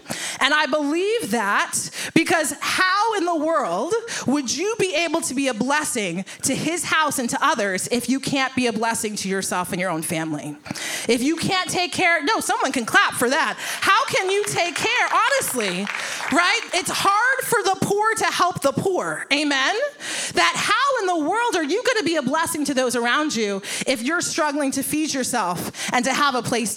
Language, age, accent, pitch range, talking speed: English, 30-49, American, 245-330 Hz, 200 wpm